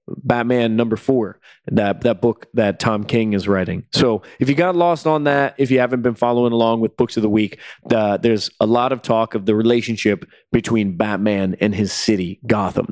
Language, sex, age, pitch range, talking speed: English, male, 20-39, 110-135 Hz, 205 wpm